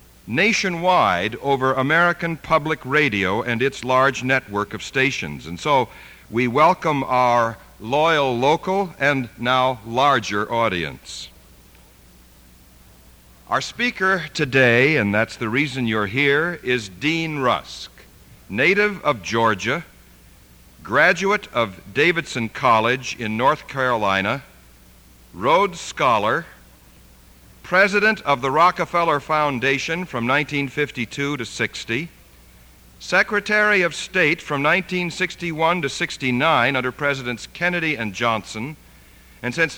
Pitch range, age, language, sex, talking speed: 110-160 Hz, 60-79, English, male, 105 wpm